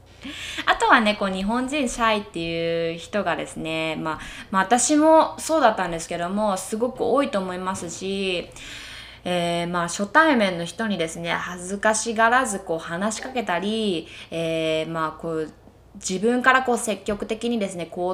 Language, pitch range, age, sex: Japanese, 175-240 Hz, 20-39, female